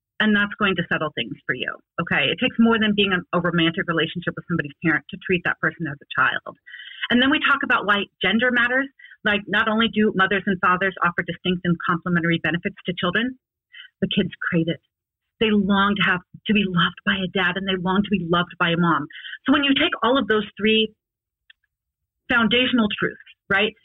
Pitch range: 185-235 Hz